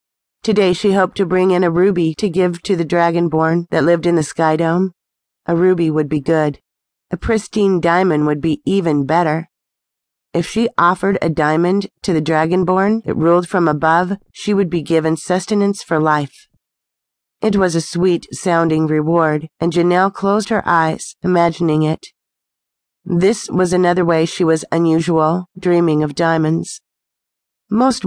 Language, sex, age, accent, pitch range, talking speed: English, female, 40-59, American, 160-185 Hz, 155 wpm